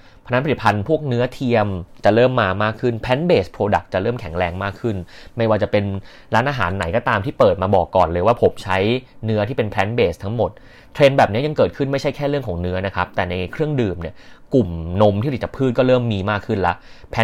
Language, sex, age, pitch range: Thai, male, 30-49, 95-120 Hz